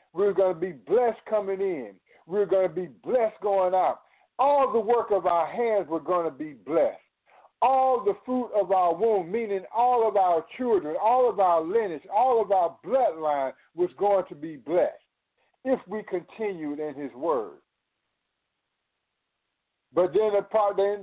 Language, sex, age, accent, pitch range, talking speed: English, male, 50-69, American, 180-230 Hz, 165 wpm